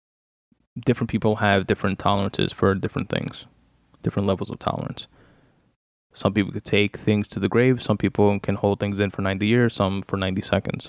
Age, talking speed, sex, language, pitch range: 20-39, 180 wpm, male, English, 95-110 Hz